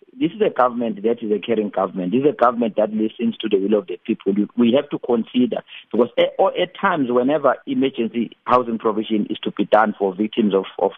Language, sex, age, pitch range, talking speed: English, male, 50-69, 110-130 Hz, 220 wpm